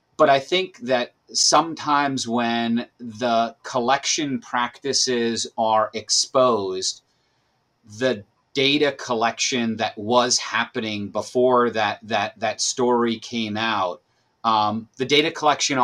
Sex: male